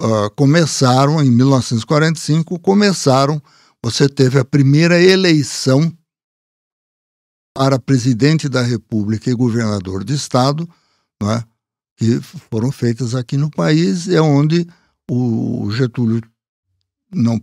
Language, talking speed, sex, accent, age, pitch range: Portuguese, 110 wpm, male, Brazilian, 60-79, 120-155 Hz